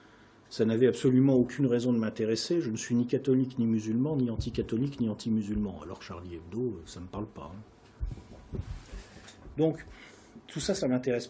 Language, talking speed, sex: French, 170 wpm, male